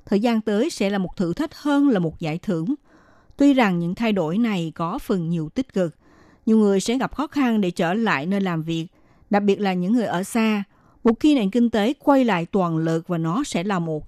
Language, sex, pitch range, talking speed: Vietnamese, female, 170-235 Hz, 245 wpm